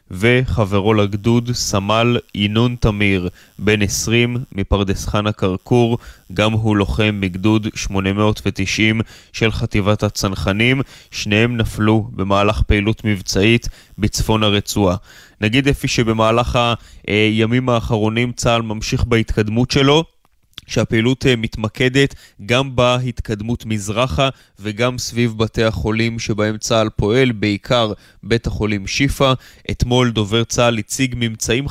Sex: male